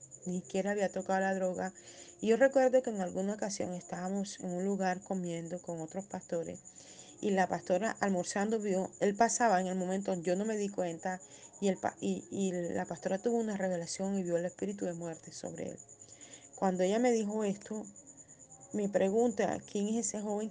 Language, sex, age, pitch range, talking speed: Spanish, female, 40-59, 175-200 Hz, 185 wpm